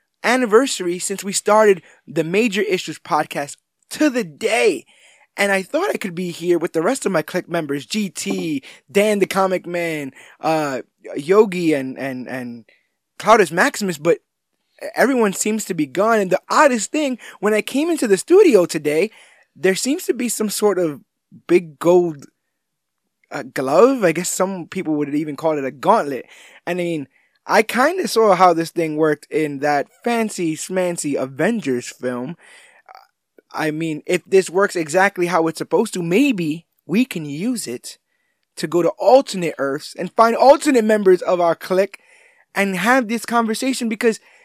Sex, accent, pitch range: male, American, 155-220 Hz